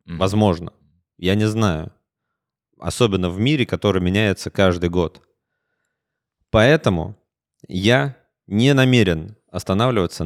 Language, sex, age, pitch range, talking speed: Russian, male, 30-49, 90-115 Hz, 95 wpm